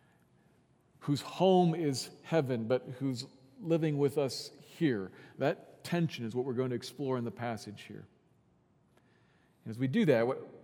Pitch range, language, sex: 115-145 Hz, English, male